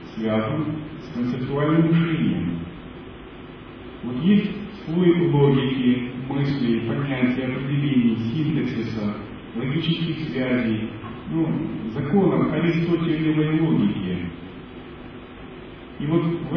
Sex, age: male, 40-59